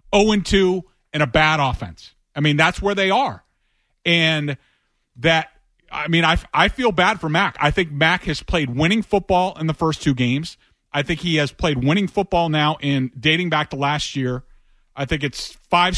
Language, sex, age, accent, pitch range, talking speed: English, male, 40-59, American, 145-195 Hz, 200 wpm